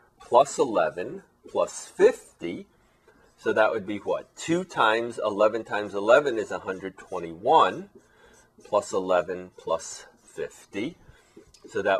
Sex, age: male, 30-49